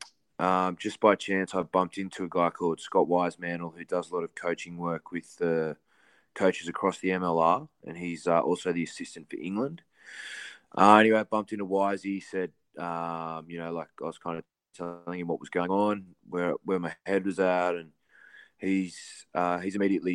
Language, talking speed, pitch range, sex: English, 190 wpm, 85-95 Hz, male